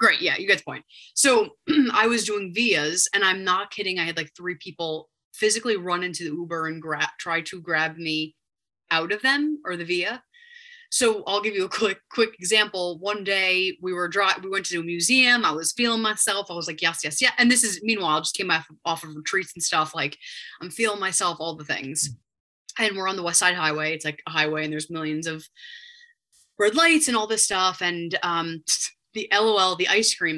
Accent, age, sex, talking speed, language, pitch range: American, 20-39, female, 225 wpm, English, 165-220 Hz